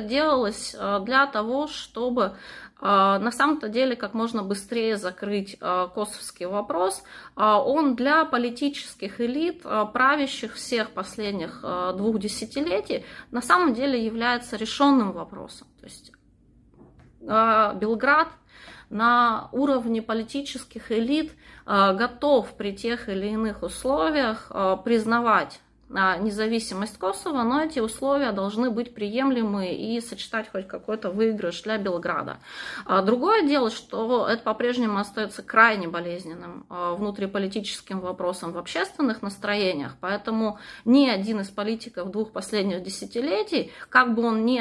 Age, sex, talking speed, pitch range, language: 20-39, female, 110 wpm, 200-255 Hz, Russian